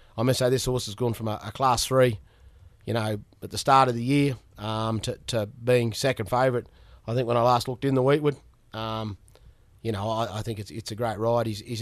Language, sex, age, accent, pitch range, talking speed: English, male, 30-49, Australian, 110-130 Hz, 245 wpm